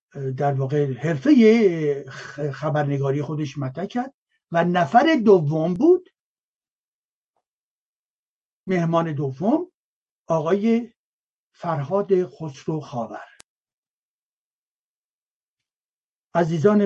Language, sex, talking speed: Persian, male, 60 wpm